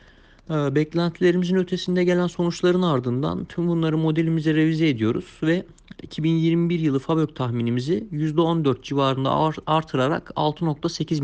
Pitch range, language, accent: 125-160 Hz, Turkish, native